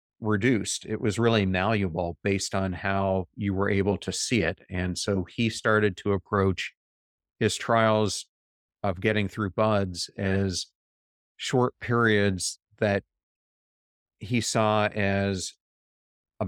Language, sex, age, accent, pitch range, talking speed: English, male, 40-59, American, 95-105 Hz, 125 wpm